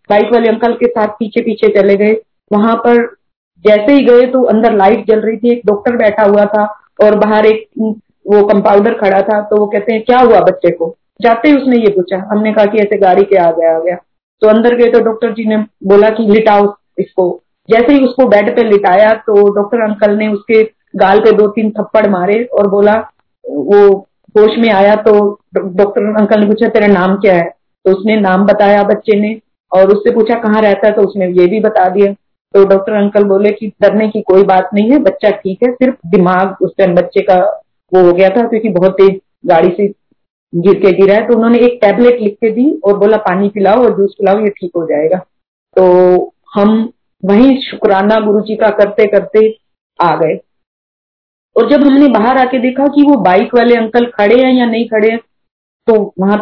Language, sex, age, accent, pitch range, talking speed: Hindi, female, 30-49, native, 200-230 Hz, 205 wpm